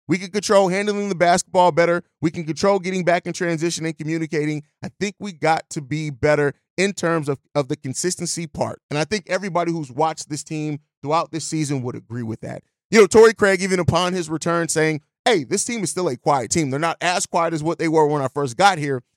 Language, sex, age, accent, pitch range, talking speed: English, male, 30-49, American, 150-180 Hz, 235 wpm